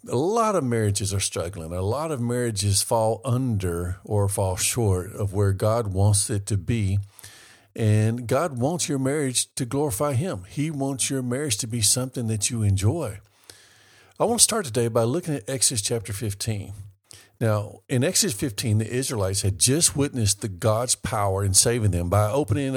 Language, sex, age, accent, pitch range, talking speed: English, male, 50-69, American, 100-125 Hz, 175 wpm